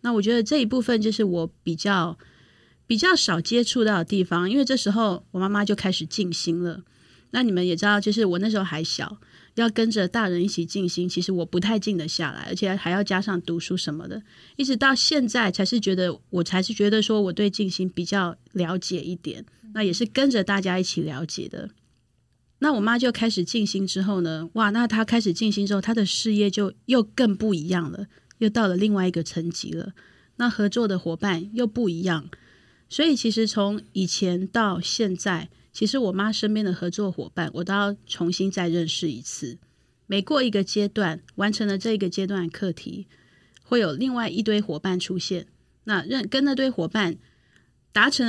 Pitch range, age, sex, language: 180-220 Hz, 30-49, female, Chinese